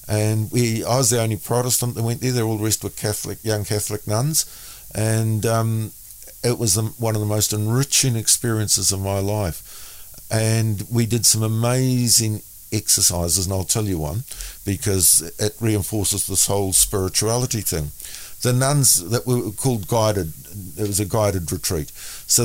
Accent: Australian